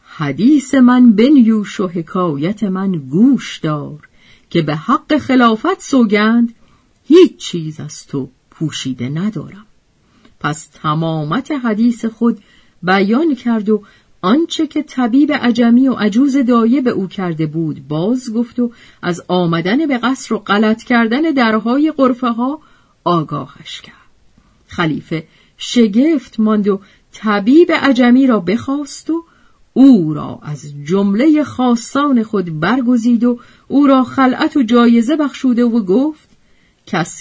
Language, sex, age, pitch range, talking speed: Persian, female, 50-69, 170-270 Hz, 125 wpm